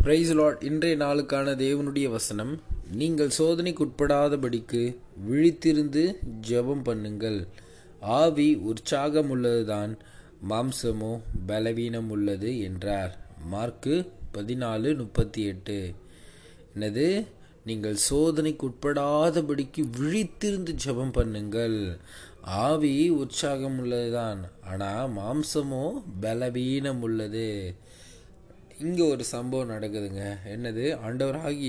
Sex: male